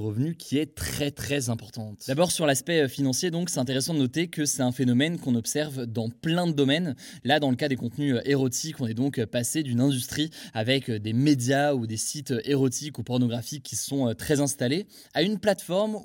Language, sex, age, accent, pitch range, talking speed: French, male, 20-39, French, 125-160 Hz, 200 wpm